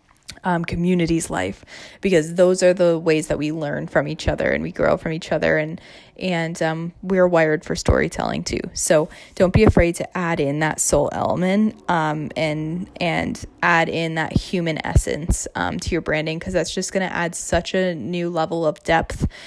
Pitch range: 155-180 Hz